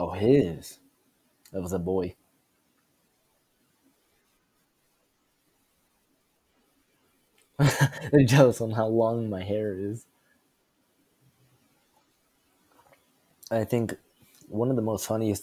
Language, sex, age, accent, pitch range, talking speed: English, male, 20-39, American, 100-120 Hz, 80 wpm